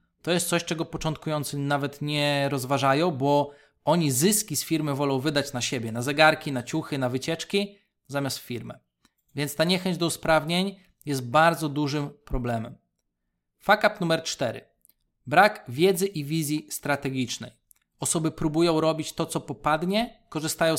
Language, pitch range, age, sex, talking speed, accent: Polish, 130-160 Hz, 20-39, male, 145 wpm, native